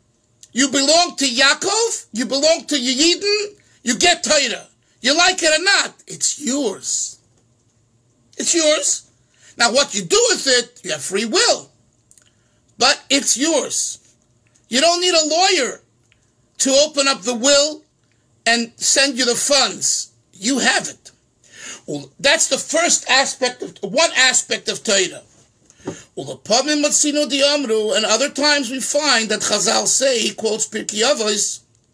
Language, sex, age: English, male, 50-69